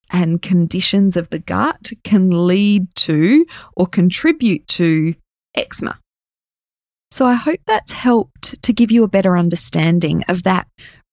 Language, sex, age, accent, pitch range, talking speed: English, female, 20-39, Australian, 175-210 Hz, 135 wpm